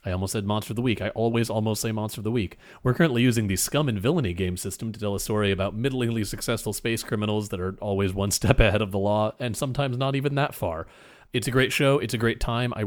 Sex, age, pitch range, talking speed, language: male, 30-49, 100-125 Hz, 265 wpm, English